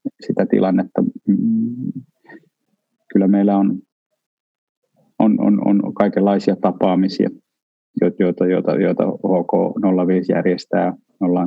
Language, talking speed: Finnish, 80 wpm